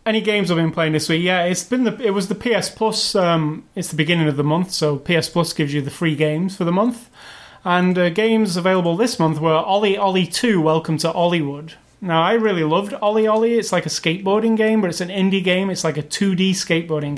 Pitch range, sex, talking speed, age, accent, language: 155-200 Hz, male, 240 wpm, 30-49, British, English